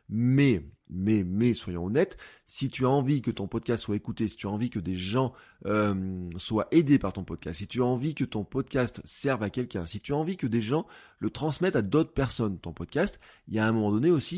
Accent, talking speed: French, 240 wpm